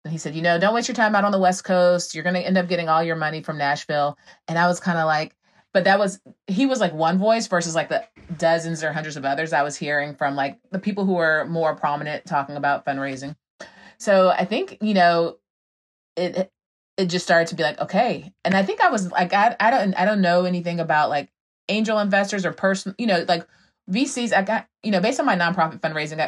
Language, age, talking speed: English, 30-49, 240 wpm